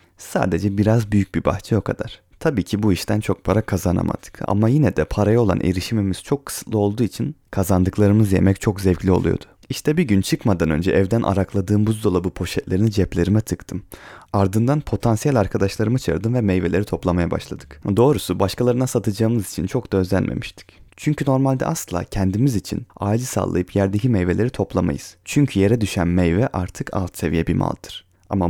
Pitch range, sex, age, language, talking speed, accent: 95-115 Hz, male, 30-49, Turkish, 160 wpm, native